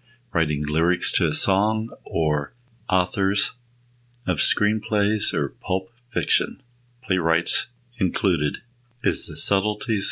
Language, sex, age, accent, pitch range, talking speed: English, male, 50-69, American, 85-120 Hz, 100 wpm